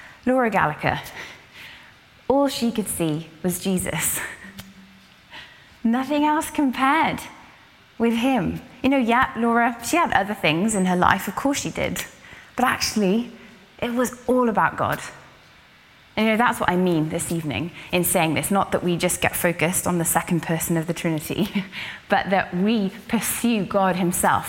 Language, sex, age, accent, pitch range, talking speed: English, female, 20-39, British, 170-230 Hz, 160 wpm